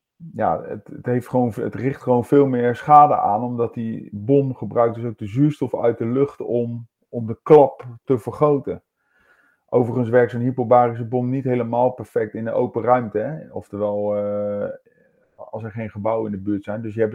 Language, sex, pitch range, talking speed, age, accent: Dutch, male, 110-125 Hz, 175 wpm, 40-59, Dutch